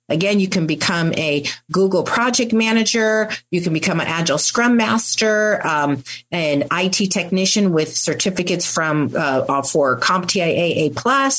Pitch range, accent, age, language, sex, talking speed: 170-225 Hz, American, 40-59, English, female, 135 wpm